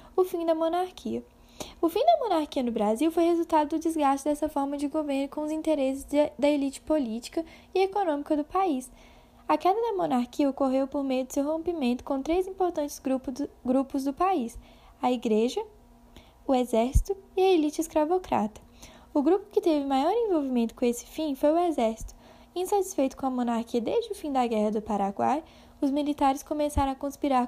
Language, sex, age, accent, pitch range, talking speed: Portuguese, female, 10-29, Brazilian, 245-320 Hz, 175 wpm